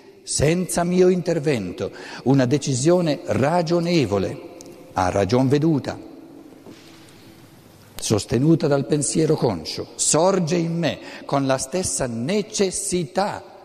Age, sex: 60-79, male